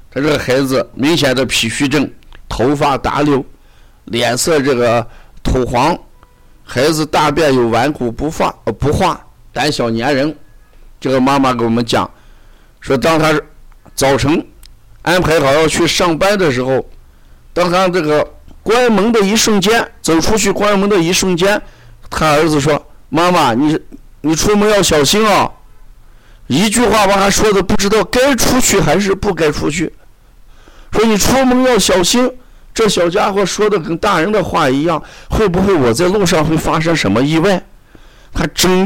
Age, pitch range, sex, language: 50-69, 125-200 Hz, male, Chinese